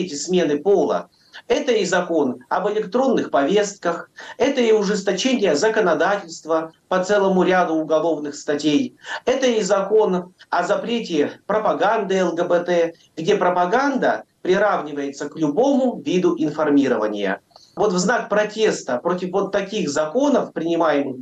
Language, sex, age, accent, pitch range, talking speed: Russian, male, 40-59, native, 150-205 Hz, 115 wpm